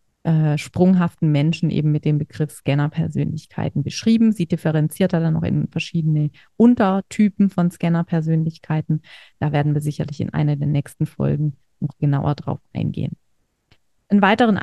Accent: German